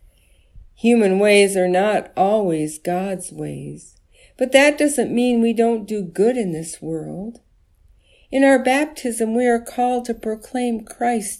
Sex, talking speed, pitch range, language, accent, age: female, 140 wpm, 175-235 Hz, English, American, 50-69